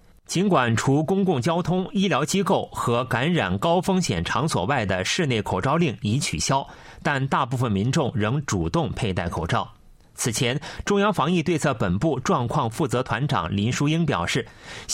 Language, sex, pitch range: Chinese, male, 115-175 Hz